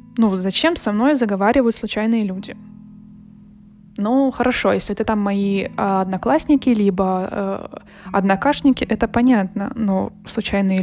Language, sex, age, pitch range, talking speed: Russian, female, 20-39, 200-245 Hz, 115 wpm